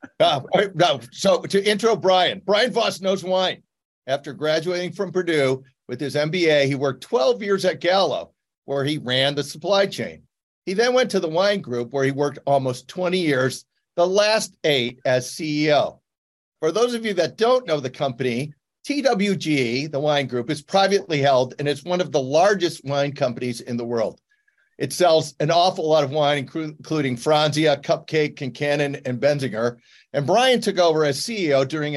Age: 50-69